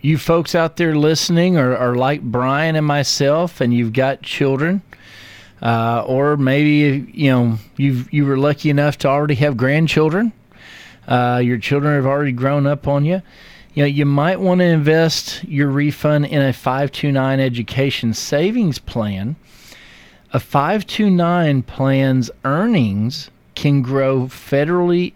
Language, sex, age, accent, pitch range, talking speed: English, male, 40-59, American, 125-150 Hz, 155 wpm